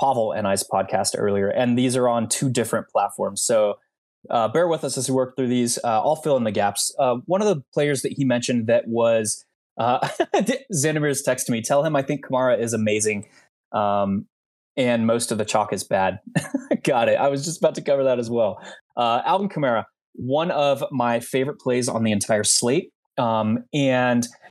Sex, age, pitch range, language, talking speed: male, 20-39, 110-140 Hz, English, 205 wpm